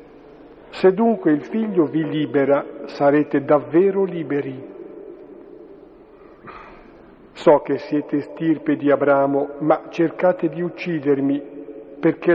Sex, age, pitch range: male, 50-69, 140-170 Hz